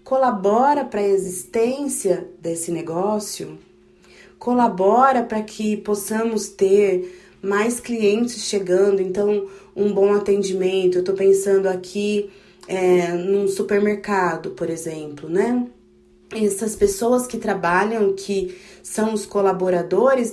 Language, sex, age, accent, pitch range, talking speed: Portuguese, female, 20-39, Brazilian, 185-225 Hz, 105 wpm